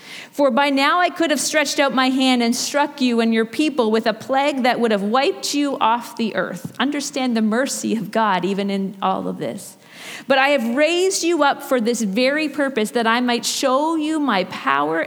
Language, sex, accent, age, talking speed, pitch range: English, female, American, 40-59, 215 wpm, 225-285 Hz